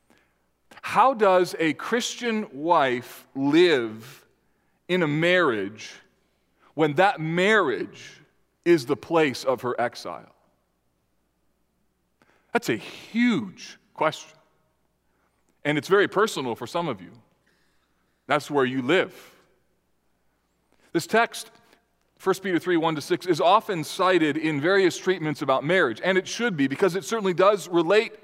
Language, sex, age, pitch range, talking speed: English, male, 40-59, 140-195 Hz, 120 wpm